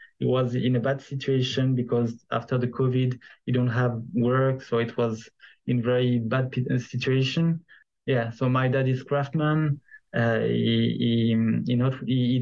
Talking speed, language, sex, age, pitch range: 170 wpm, English, male, 20-39, 120-135 Hz